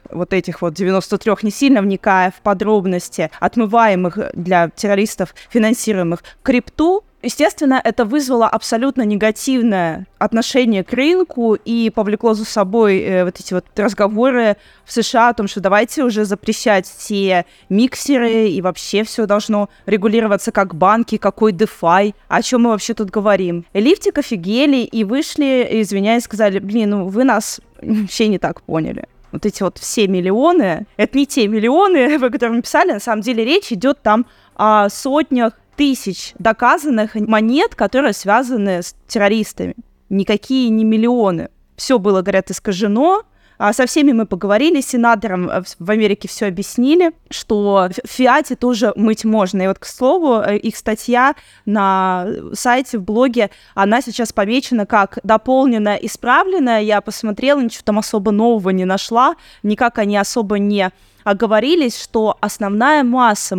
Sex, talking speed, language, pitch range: female, 145 wpm, Russian, 200-245 Hz